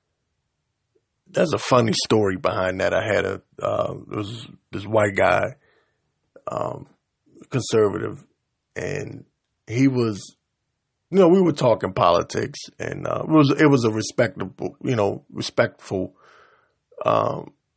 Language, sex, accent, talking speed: English, male, American, 130 wpm